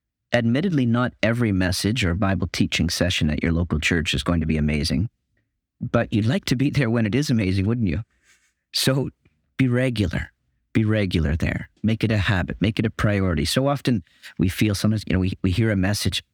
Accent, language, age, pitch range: American, English, 40-59, 85-115 Hz